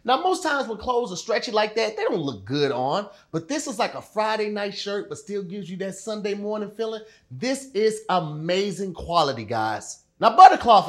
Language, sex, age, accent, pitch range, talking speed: English, male, 30-49, American, 180-275 Hz, 205 wpm